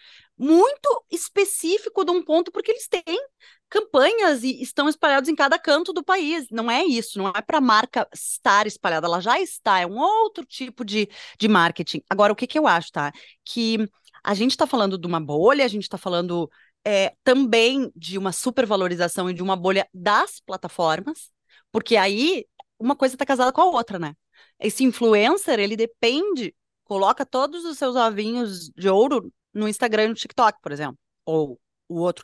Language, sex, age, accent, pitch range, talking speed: Portuguese, female, 20-39, Brazilian, 190-285 Hz, 180 wpm